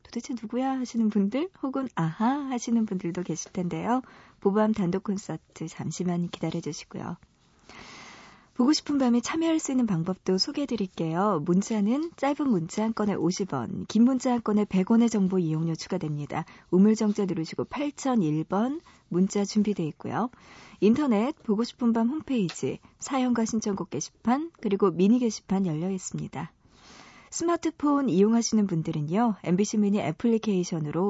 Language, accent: Korean, native